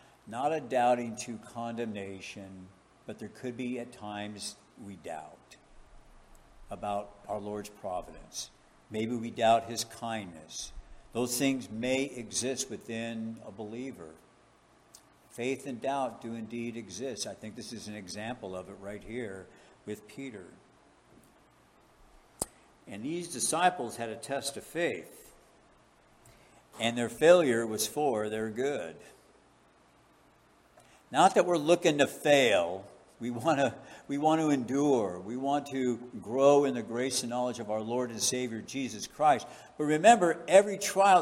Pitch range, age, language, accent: 110-140 Hz, 60-79, English, American